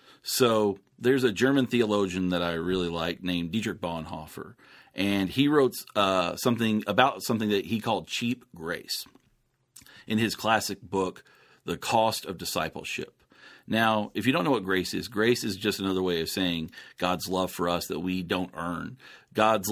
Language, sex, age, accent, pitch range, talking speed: English, male, 40-59, American, 95-120 Hz, 170 wpm